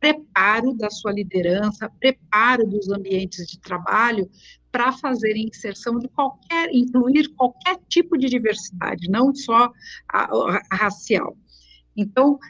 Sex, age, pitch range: female, 50-69, 195-255 Hz